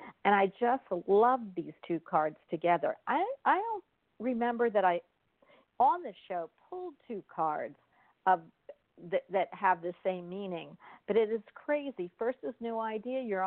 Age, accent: 50-69, American